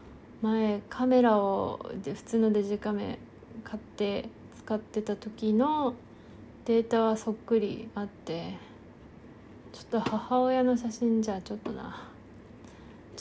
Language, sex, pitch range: Japanese, female, 180-240 Hz